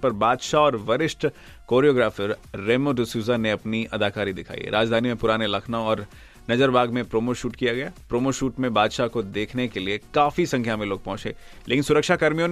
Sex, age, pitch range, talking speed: male, 30-49, 110-140 Hz, 50 wpm